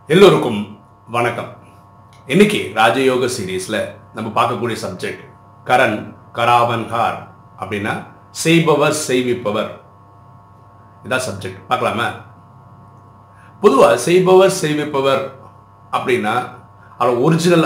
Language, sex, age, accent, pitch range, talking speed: Tamil, male, 50-69, native, 100-150 Hz, 80 wpm